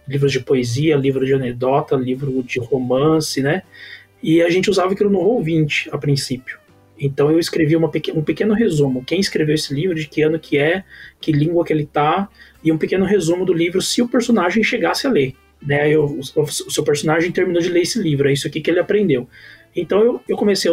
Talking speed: 210 wpm